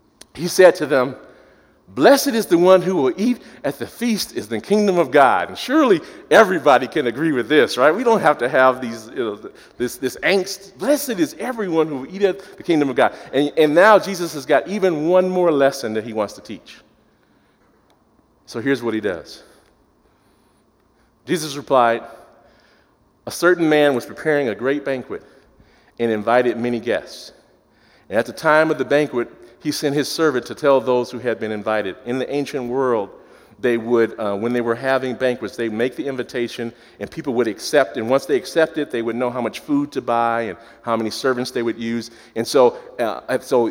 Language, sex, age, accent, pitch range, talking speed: English, male, 40-59, American, 120-170 Hz, 200 wpm